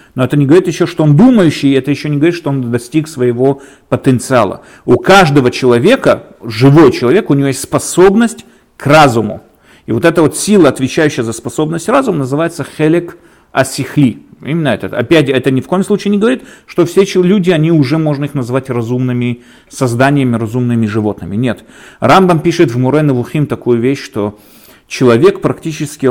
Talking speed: 170 wpm